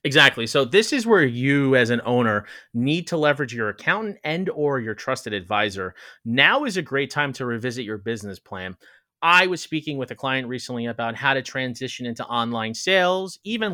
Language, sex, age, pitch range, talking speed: English, male, 30-49, 120-160 Hz, 190 wpm